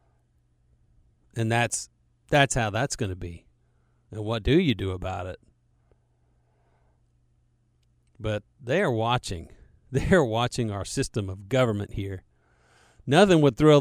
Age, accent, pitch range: 40-59, American, 85-135 Hz